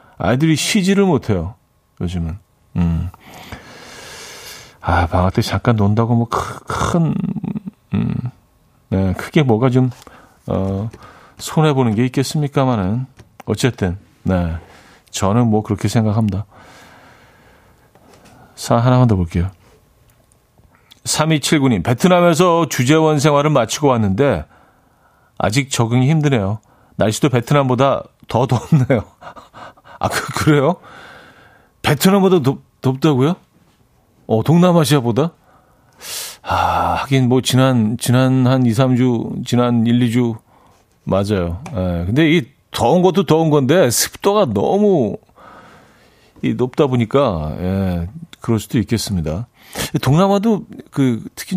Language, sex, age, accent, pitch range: Korean, male, 40-59, native, 100-150 Hz